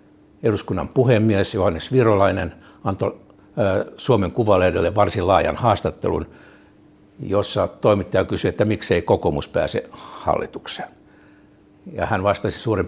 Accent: native